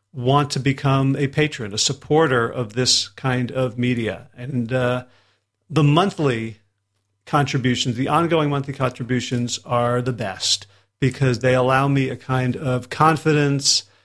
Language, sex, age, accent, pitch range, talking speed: English, male, 40-59, American, 125-150 Hz, 135 wpm